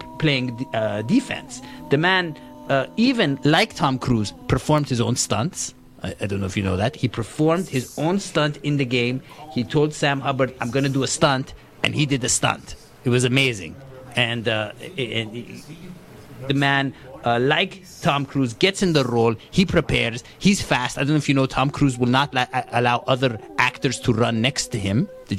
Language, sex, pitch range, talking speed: English, male, 115-160 Hz, 195 wpm